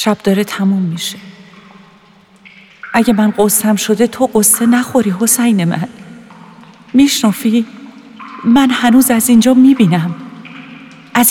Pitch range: 205-250 Hz